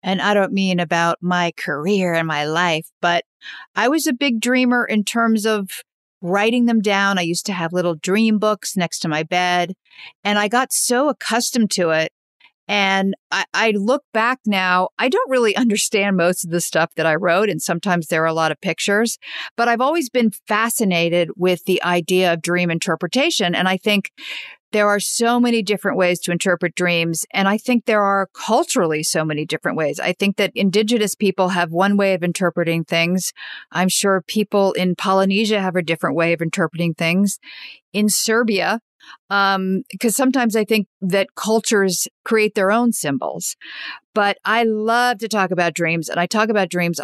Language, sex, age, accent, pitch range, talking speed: English, female, 50-69, American, 175-215 Hz, 185 wpm